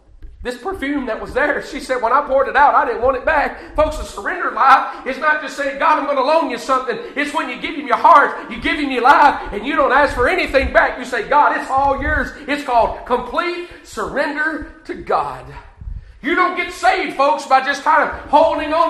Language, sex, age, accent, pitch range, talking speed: English, male, 40-59, American, 260-315 Hz, 235 wpm